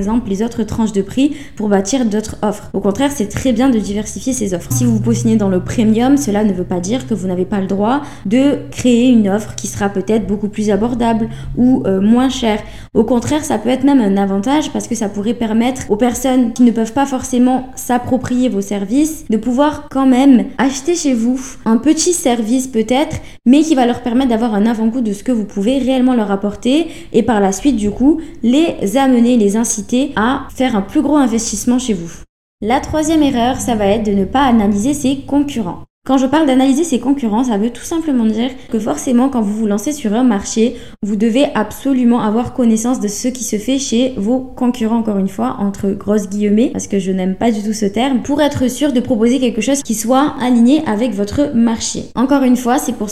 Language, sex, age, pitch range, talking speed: French, female, 20-39, 210-260 Hz, 220 wpm